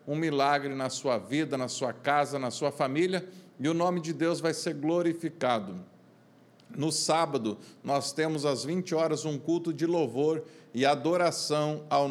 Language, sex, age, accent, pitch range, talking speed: Portuguese, male, 50-69, Brazilian, 145-175 Hz, 165 wpm